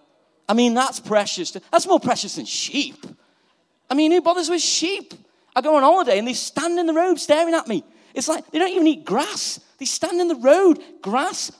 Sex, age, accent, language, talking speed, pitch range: male, 40-59, British, English, 215 wpm, 195-320 Hz